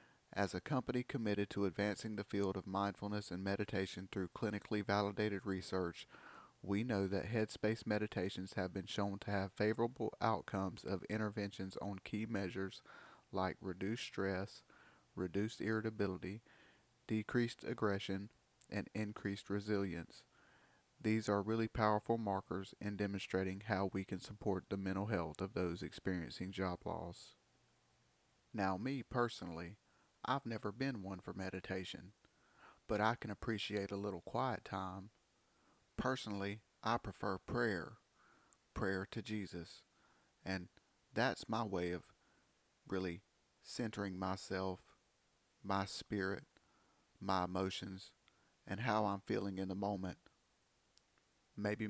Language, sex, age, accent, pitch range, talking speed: English, male, 30-49, American, 95-110 Hz, 125 wpm